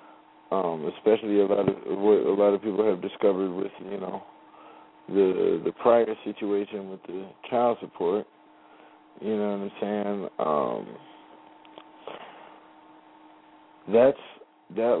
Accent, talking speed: American, 125 wpm